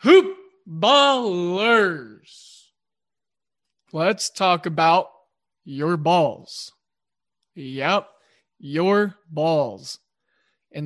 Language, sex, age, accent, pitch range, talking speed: English, male, 20-39, American, 165-200 Hz, 60 wpm